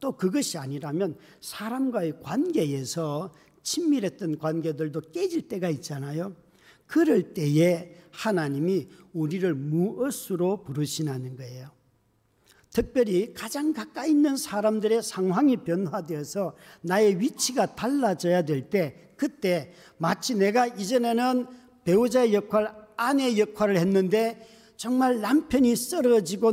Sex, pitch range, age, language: male, 160-230 Hz, 50-69, Korean